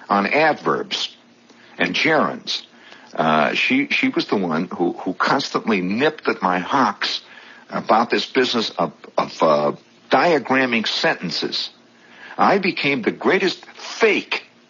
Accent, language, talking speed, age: American, English, 125 wpm, 60-79